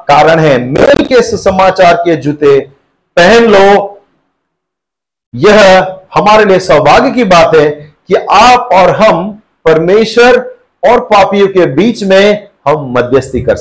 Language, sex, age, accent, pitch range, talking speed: Hindi, male, 50-69, native, 195-255 Hz, 130 wpm